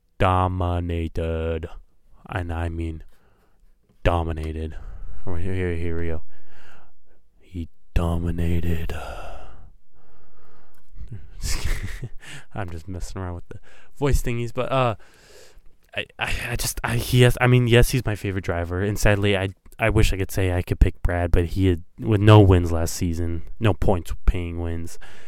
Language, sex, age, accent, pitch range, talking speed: English, male, 20-39, American, 90-110 Hz, 140 wpm